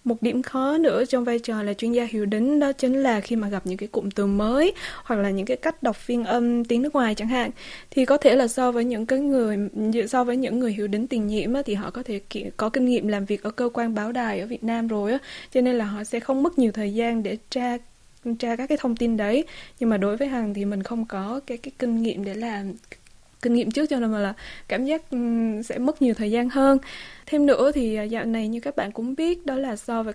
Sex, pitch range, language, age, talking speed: female, 215-260 Hz, Vietnamese, 20-39, 265 wpm